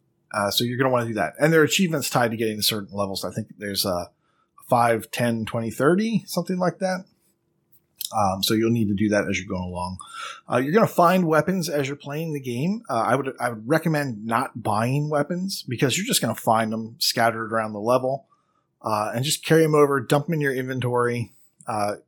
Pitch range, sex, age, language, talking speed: 110-145 Hz, male, 30-49, English, 225 wpm